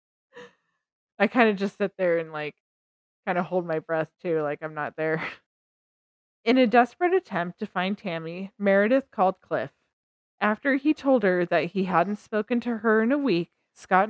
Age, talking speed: 20-39, 180 wpm